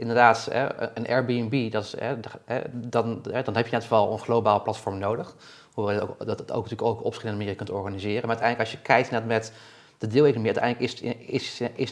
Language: Dutch